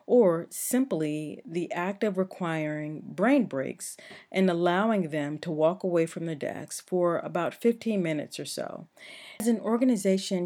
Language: English